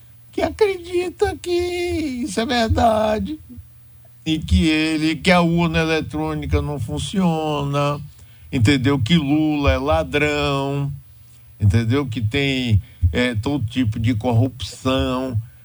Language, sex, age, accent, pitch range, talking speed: Portuguese, male, 60-79, Brazilian, 105-170 Hz, 105 wpm